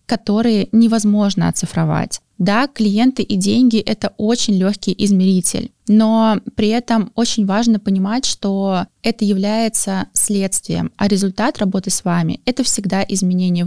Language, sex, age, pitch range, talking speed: Russian, female, 20-39, 180-215 Hz, 125 wpm